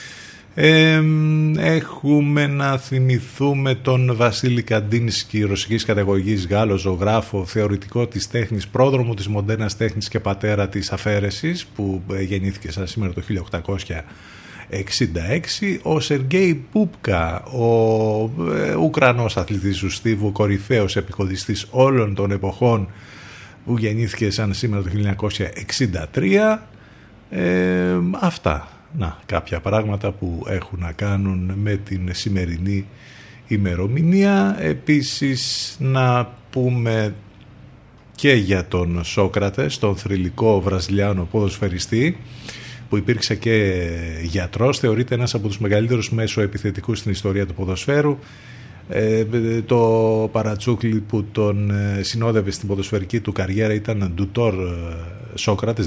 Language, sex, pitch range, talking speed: Greek, male, 100-120 Hz, 105 wpm